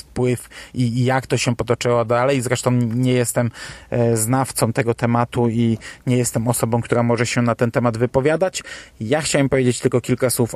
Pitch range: 120-135 Hz